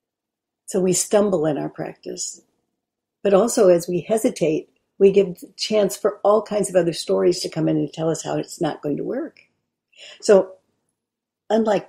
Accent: American